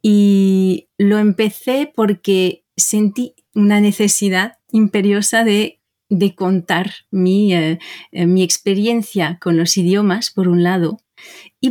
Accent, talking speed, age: Spanish, 115 wpm, 30-49